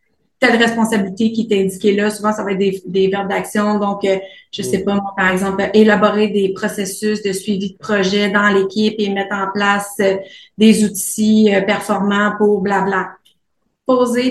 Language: French